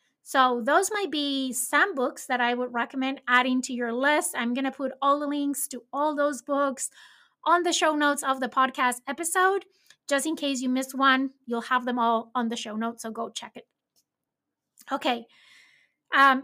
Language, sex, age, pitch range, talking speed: English, female, 30-49, 240-285 Hz, 190 wpm